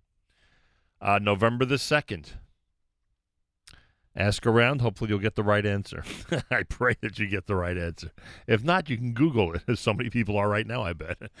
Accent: American